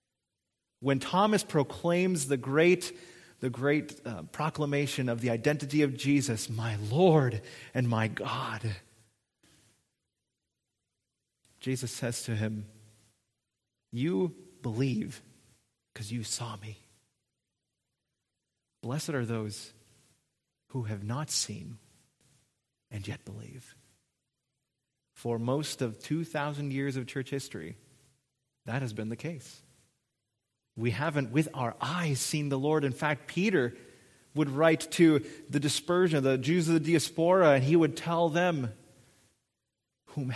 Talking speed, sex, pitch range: 115 wpm, male, 115-145 Hz